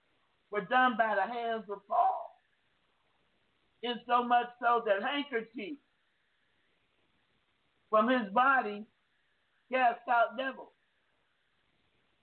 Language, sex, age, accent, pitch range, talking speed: English, male, 50-69, American, 225-290 Hz, 95 wpm